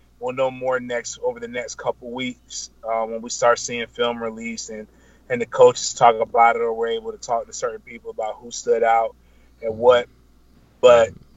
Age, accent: 30-49, American